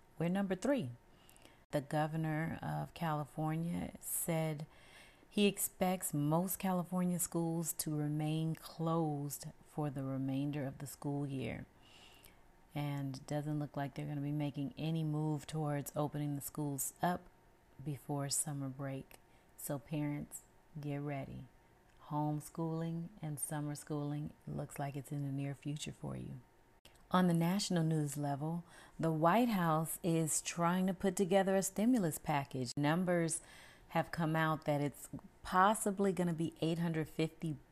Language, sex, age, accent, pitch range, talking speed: English, female, 40-59, American, 145-165 Hz, 135 wpm